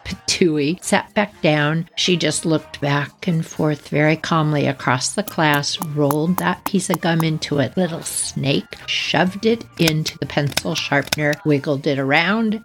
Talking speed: 155 wpm